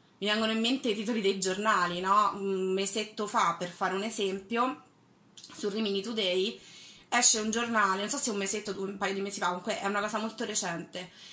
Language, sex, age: Italian, female, 20-39